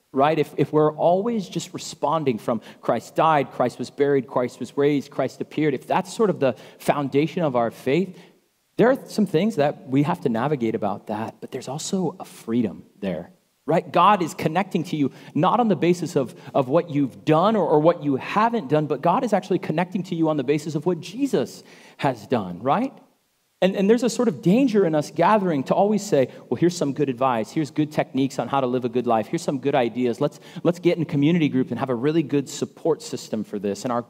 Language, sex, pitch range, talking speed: English, male, 125-170 Hz, 230 wpm